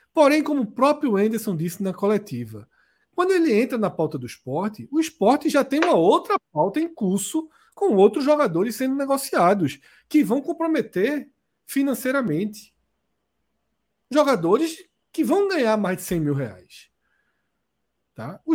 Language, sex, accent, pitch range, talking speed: Portuguese, male, Brazilian, 185-295 Hz, 140 wpm